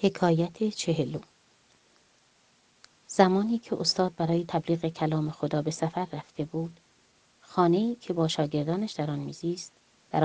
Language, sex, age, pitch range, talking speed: Persian, female, 30-49, 150-185 Hz, 125 wpm